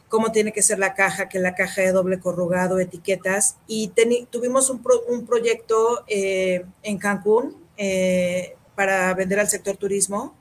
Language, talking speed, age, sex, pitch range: Spanish, 165 wpm, 40-59, female, 185-215 Hz